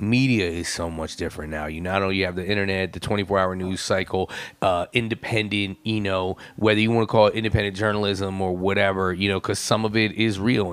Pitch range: 95-115 Hz